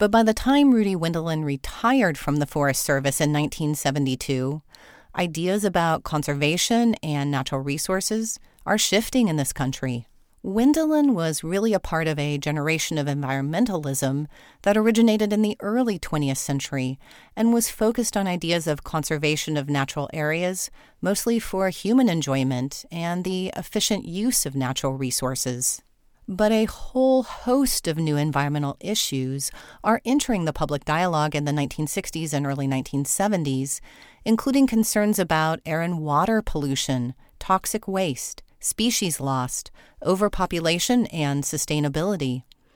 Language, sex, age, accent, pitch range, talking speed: English, female, 40-59, American, 140-210 Hz, 135 wpm